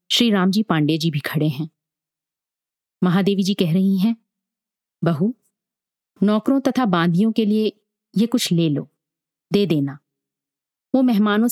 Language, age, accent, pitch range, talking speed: Hindi, 30-49, native, 155-220 Hz, 135 wpm